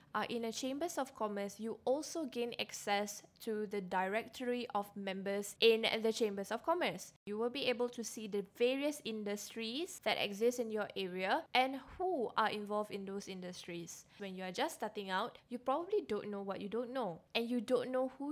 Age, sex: 10-29, female